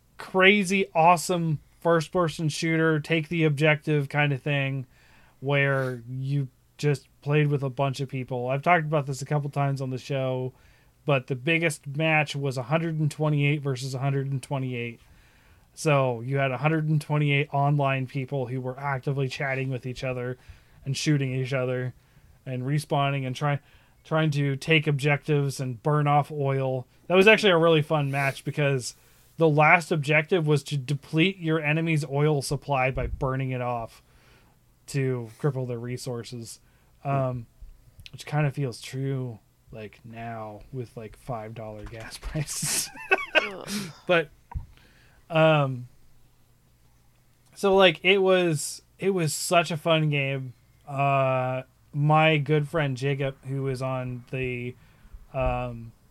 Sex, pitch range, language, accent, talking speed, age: male, 130-155 Hz, English, American, 135 wpm, 20-39